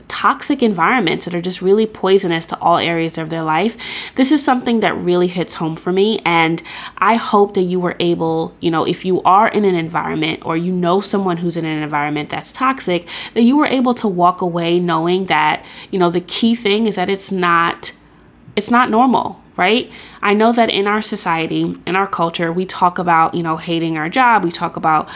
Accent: American